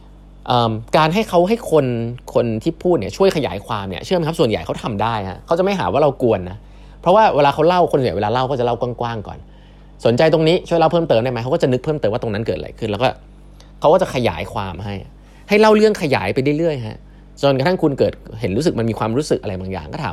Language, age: Thai, 20-39